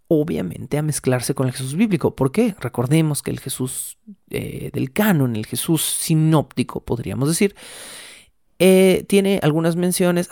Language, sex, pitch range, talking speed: Spanish, male, 130-180 Hz, 140 wpm